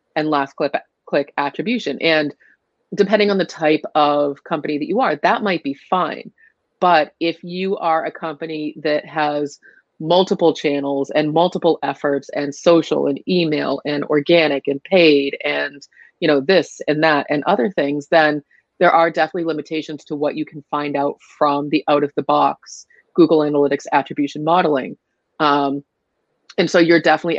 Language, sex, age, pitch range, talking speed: English, female, 30-49, 145-170 Hz, 155 wpm